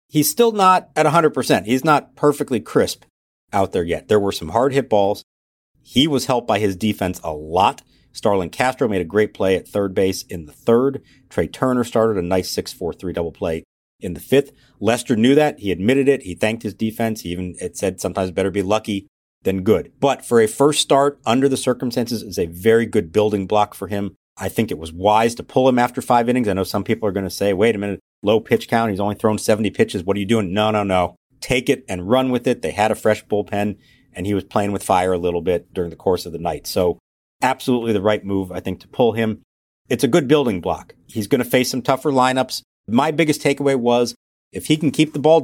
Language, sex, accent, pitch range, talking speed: English, male, American, 95-130 Hz, 240 wpm